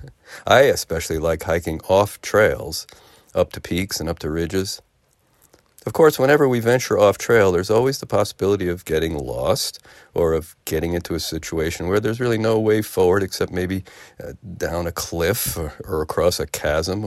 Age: 50-69